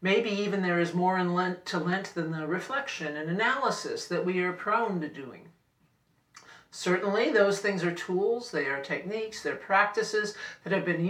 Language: English